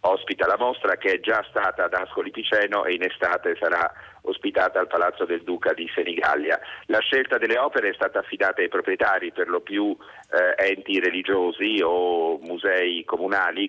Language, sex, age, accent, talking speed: Italian, male, 40-59, native, 170 wpm